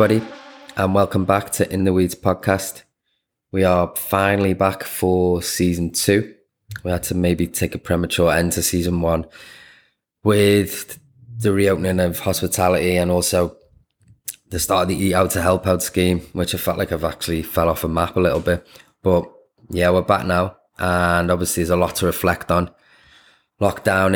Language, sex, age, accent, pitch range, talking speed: English, male, 20-39, British, 90-95 Hz, 175 wpm